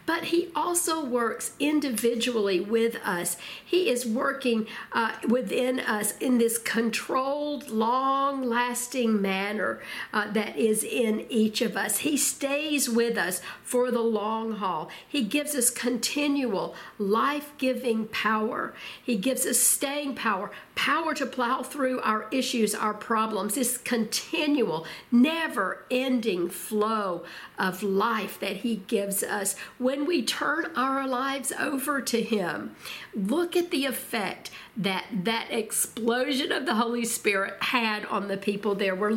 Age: 50-69